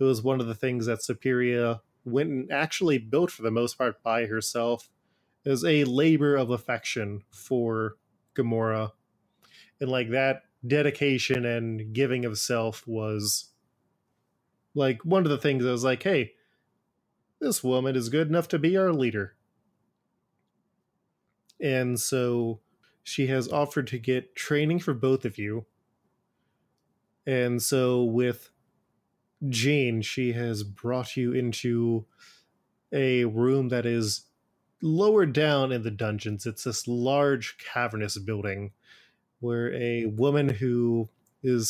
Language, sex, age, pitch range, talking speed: English, male, 20-39, 115-135 Hz, 130 wpm